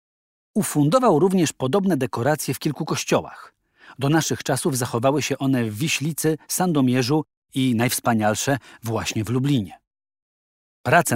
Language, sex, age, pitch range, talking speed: Polish, male, 40-59, 120-155 Hz, 120 wpm